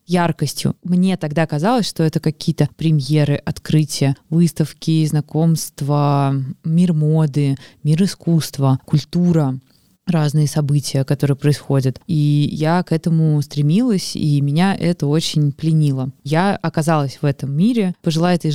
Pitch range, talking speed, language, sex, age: 145-180 Hz, 120 wpm, Russian, female, 20-39